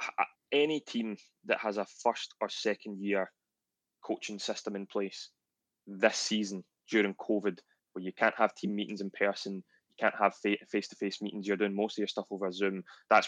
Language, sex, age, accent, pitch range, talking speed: English, male, 20-39, British, 95-105 Hz, 175 wpm